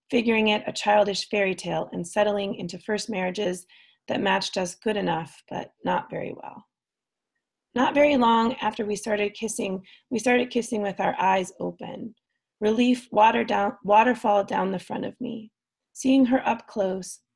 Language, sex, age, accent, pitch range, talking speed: English, female, 30-49, American, 190-225 Hz, 160 wpm